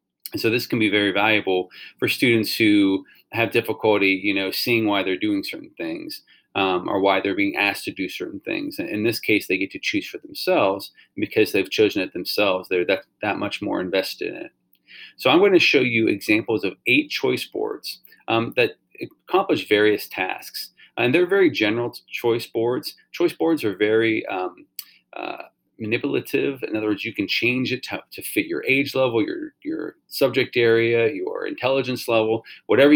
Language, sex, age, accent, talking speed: English, male, 30-49, American, 185 wpm